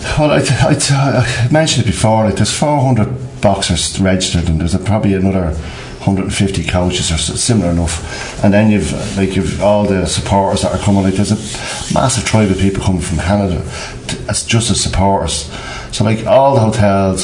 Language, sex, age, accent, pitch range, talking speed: English, male, 40-59, British, 90-110 Hz, 195 wpm